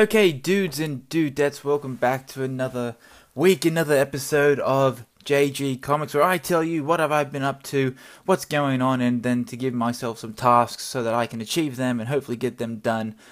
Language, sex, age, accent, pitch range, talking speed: English, male, 20-39, Australian, 125-170 Hz, 205 wpm